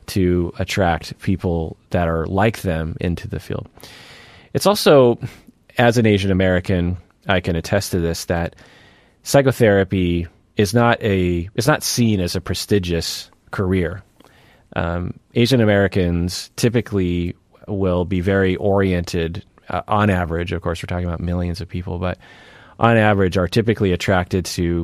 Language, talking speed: English, 145 wpm